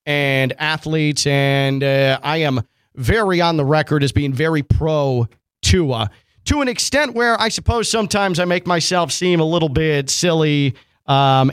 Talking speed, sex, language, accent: 160 wpm, male, English, American